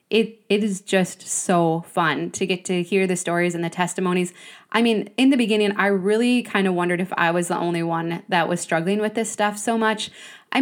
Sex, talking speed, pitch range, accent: female, 225 wpm, 180-230 Hz, American